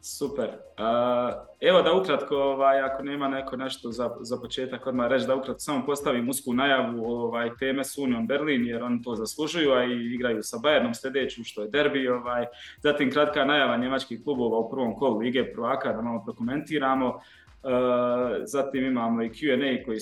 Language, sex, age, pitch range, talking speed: Croatian, male, 20-39, 115-135 Hz, 175 wpm